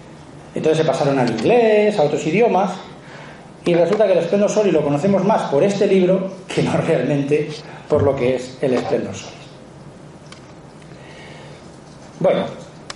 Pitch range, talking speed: 145-185 Hz, 145 wpm